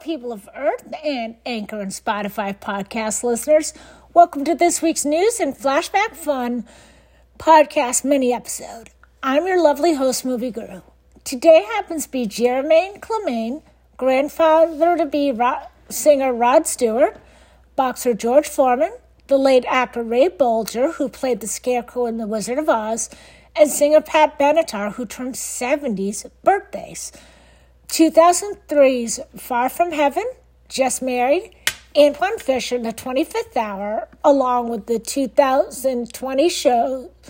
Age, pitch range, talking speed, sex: 50-69, 240-310 Hz, 120 wpm, female